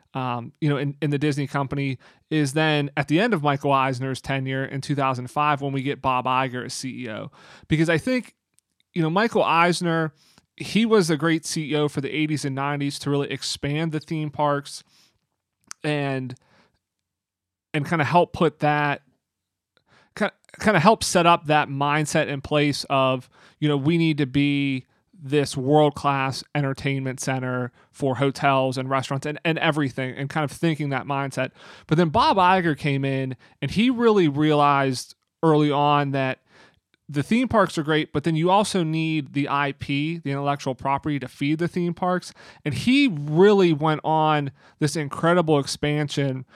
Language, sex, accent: English, male, American